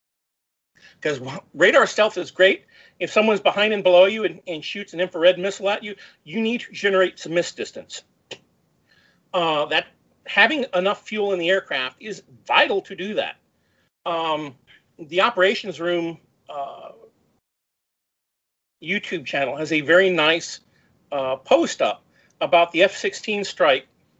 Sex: male